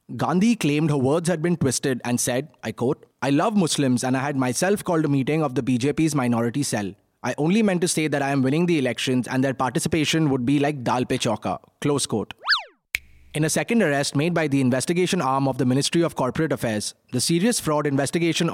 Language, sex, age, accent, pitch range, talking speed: English, male, 20-39, Indian, 130-160 Hz, 215 wpm